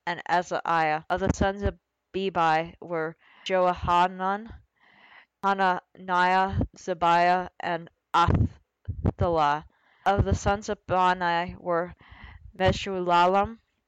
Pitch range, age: 175-195 Hz, 20-39